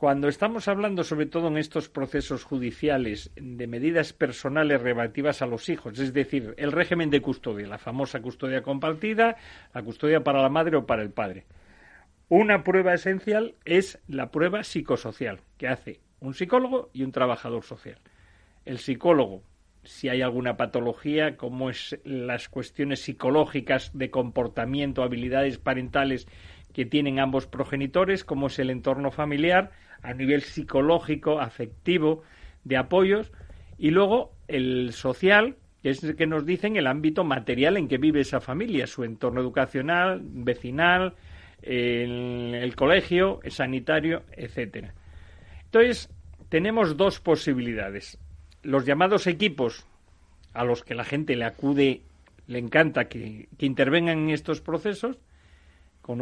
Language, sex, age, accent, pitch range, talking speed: Spanish, male, 40-59, Spanish, 120-160 Hz, 140 wpm